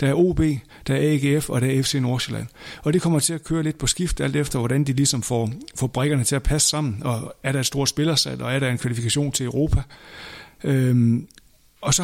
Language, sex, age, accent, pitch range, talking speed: Danish, male, 60-79, native, 125-150 Hz, 240 wpm